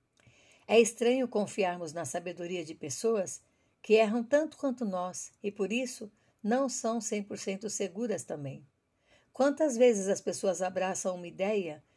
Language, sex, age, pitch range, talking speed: Portuguese, female, 60-79, 175-240 Hz, 135 wpm